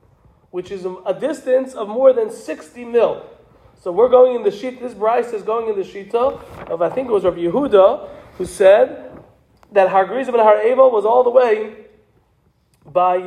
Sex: male